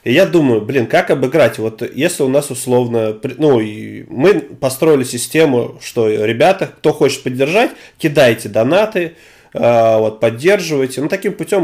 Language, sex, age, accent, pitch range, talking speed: Russian, male, 30-49, native, 120-155 Hz, 135 wpm